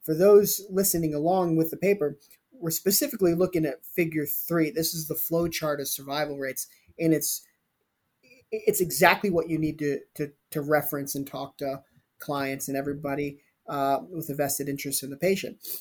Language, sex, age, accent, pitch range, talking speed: English, male, 30-49, American, 145-185 Hz, 175 wpm